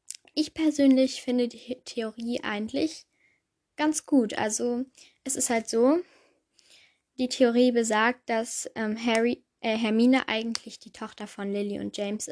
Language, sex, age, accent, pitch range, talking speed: German, female, 10-29, German, 220-265 Hz, 135 wpm